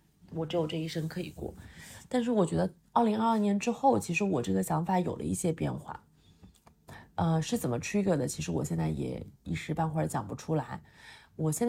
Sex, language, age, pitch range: female, Chinese, 30-49, 155-195 Hz